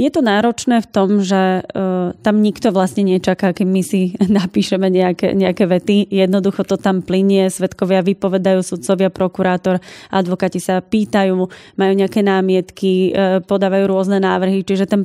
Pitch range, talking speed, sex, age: 185-205 Hz, 145 wpm, female, 20-39